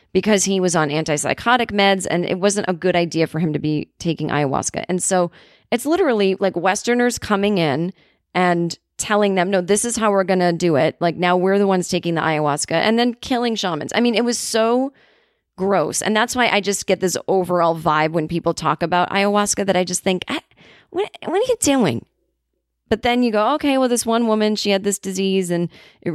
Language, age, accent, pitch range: English, 30-49, American, 170-220 Hz